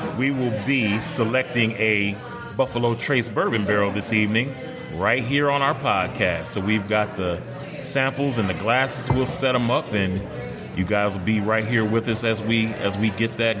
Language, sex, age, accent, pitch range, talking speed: English, male, 30-49, American, 100-120 Hz, 190 wpm